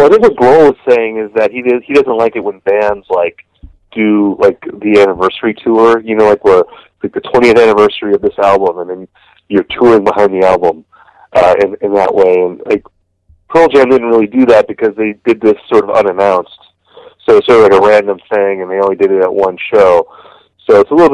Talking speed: 225 wpm